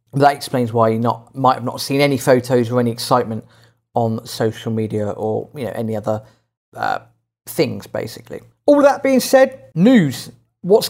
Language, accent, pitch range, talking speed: English, British, 115-140 Hz, 165 wpm